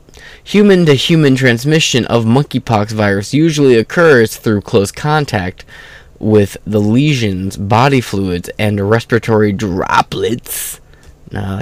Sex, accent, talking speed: male, American, 100 wpm